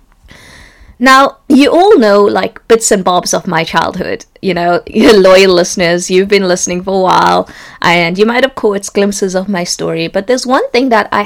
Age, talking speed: 20-39, 190 wpm